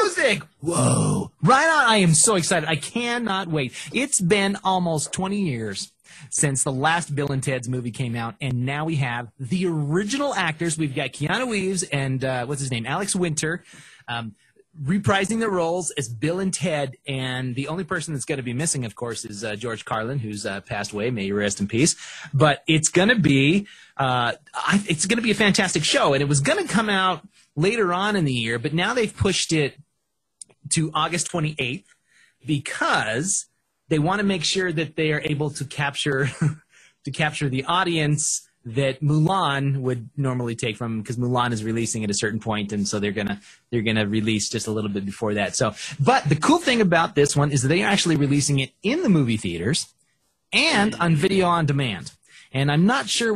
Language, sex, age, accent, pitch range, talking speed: English, male, 30-49, American, 125-175 Hz, 205 wpm